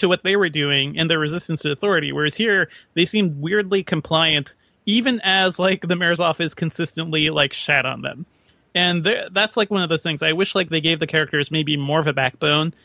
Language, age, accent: English, 30-49, American